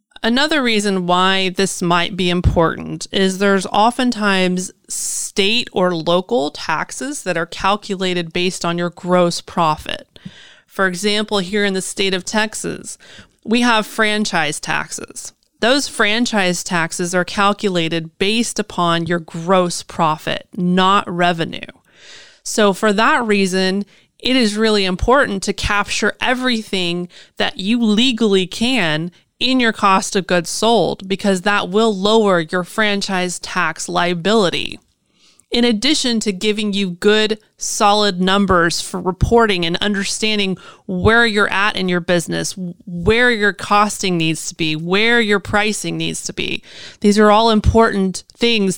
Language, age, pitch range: English, 30-49, 180-220 Hz